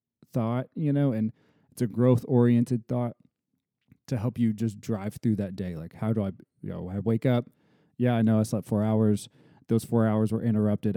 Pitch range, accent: 100-130 Hz, American